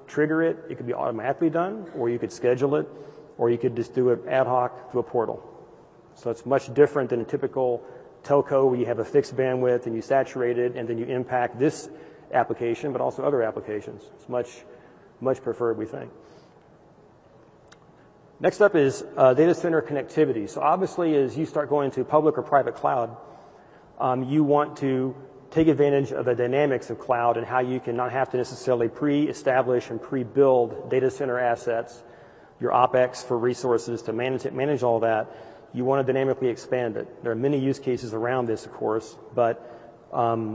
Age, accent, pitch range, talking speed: 40-59, American, 120-140 Hz, 190 wpm